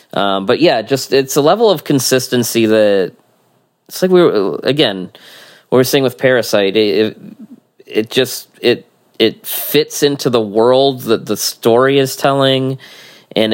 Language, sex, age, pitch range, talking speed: English, male, 20-39, 105-125 Hz, 155 wpm